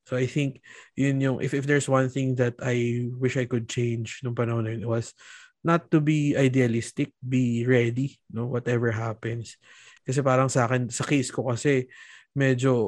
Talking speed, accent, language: 185 wpm, Filipino, English